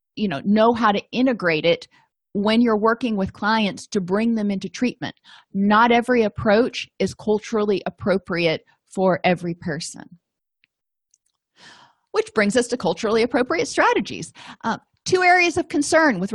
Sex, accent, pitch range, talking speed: female, American, 195-235 Hz, 145 wpm